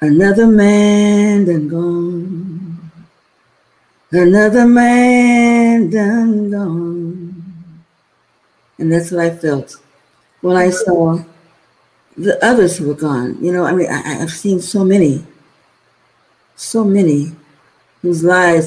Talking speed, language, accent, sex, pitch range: 110 wpm, English, American, female, 150-185 Hz